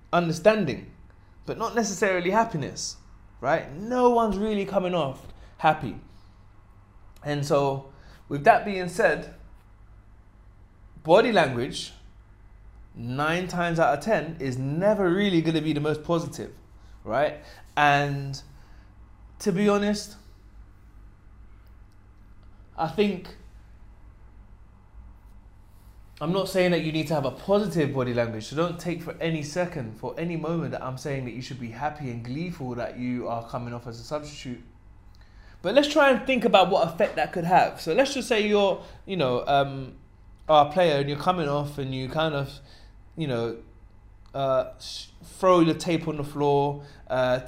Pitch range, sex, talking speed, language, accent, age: 100-165 Hz, male, 150 wpm, English, British, 20-39